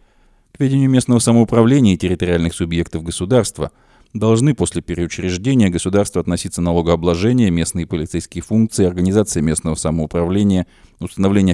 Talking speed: 110 wpm